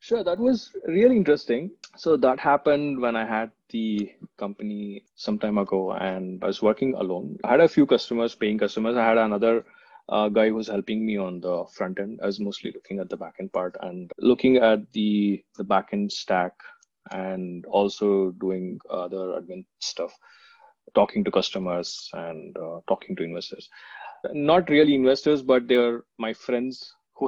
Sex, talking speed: male, 170 wpm